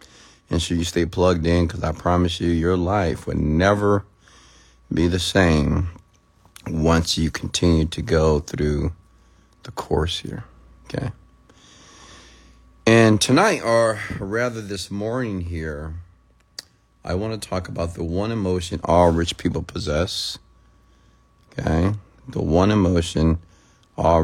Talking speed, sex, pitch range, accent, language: 125 wpm, male, 80-95 Hz, American, English